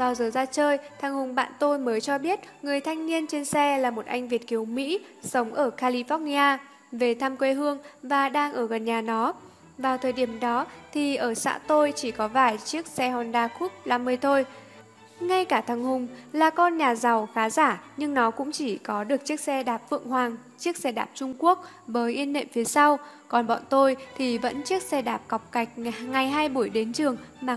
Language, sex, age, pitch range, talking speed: Vietnamese, female, 10-29, 240-290 Hz, 215 wpm